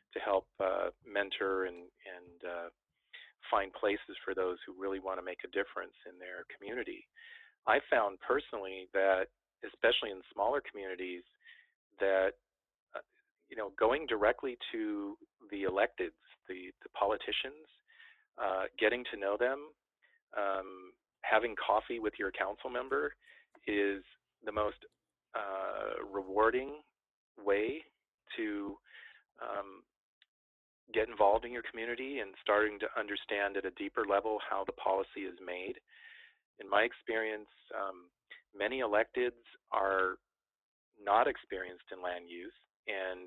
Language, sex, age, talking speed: English, male, 40-59, 130 wpm